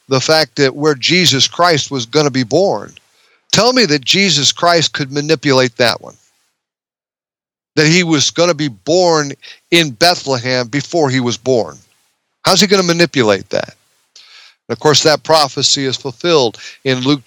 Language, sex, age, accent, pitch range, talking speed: English, male, 50-69, American, 125-155 Hz, 165 wpm